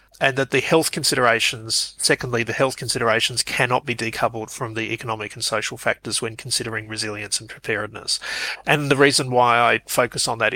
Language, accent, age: English, Australian, 30-49